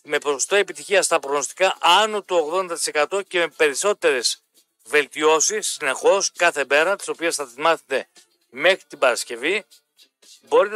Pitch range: 155-205 Hz